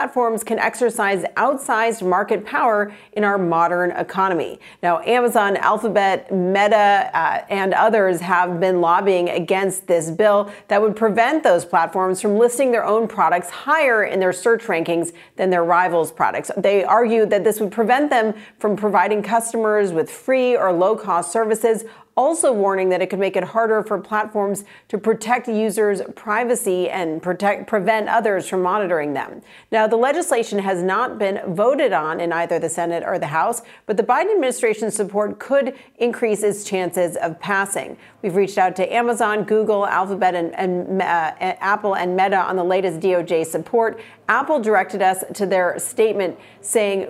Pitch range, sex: 185-225 Hz, female